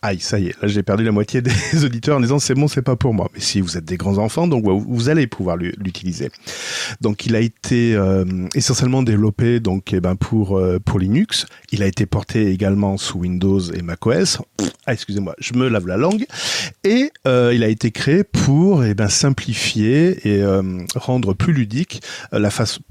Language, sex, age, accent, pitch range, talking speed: French, male, 40-59, French, 95-130 Hz, 185 wpm